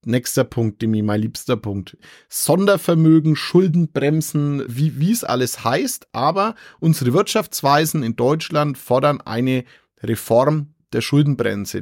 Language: German